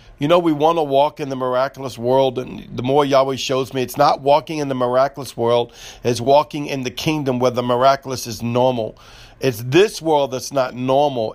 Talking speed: 205 wpm